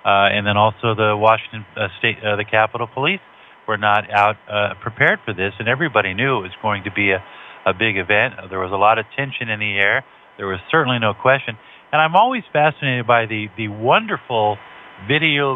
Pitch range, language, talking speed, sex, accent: 110-145 Hz, English, 210 wpm, male, American